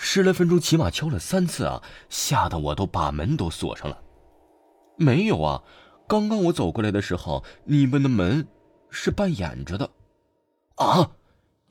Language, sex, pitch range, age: Chinese, male, 75-120 Hz, 20-39